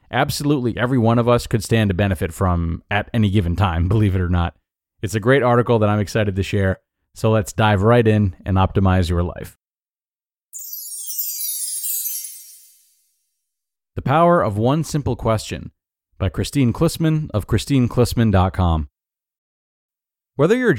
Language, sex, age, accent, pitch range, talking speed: English, male, 30-49, American, 95-125 Hz, 140 wpm